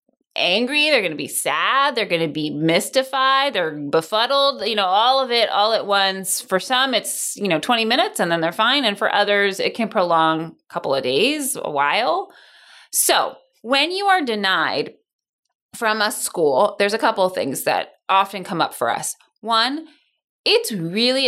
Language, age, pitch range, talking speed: English, 20-39, 185-275 Hz, 185 wpm